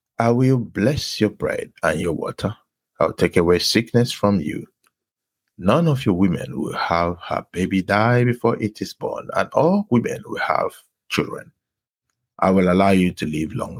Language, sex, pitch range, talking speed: English, male, 90-120 Hz, 180 wpm